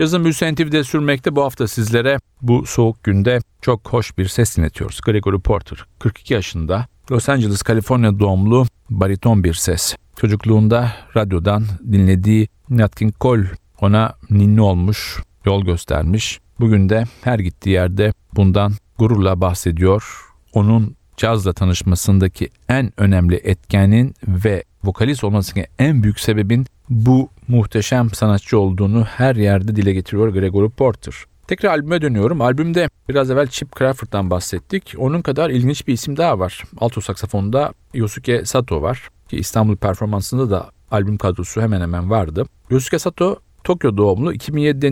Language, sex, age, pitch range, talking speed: Turkish, male, 50-69, 95-125 Hz, 135 wpm